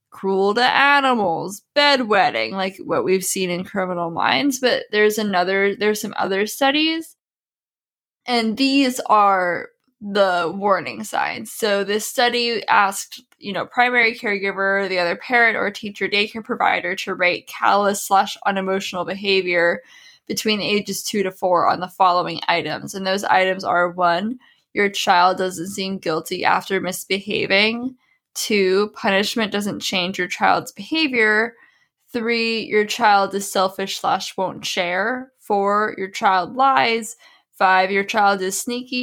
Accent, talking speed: American, 140 wpm